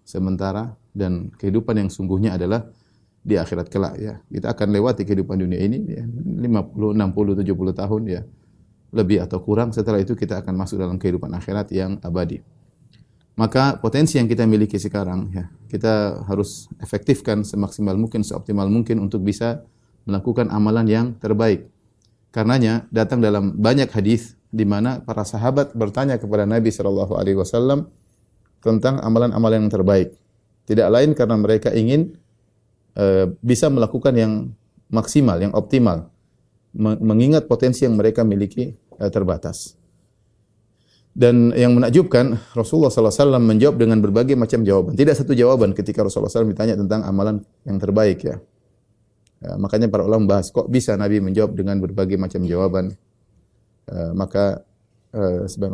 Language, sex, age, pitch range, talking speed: Indonesian, male, 30-49, 100-115 Hz, 140 wpm